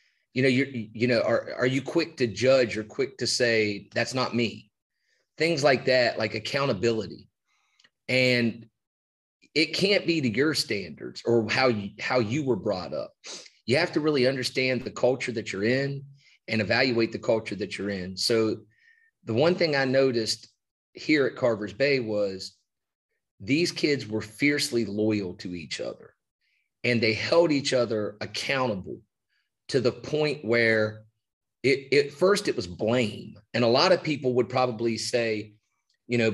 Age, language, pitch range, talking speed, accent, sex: 30-49, English, 110-140 Hz, 165 wpm, American, male